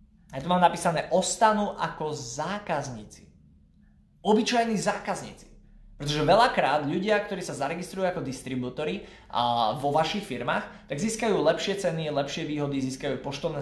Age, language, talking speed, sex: 20-39, Slovak, 130 wpm, male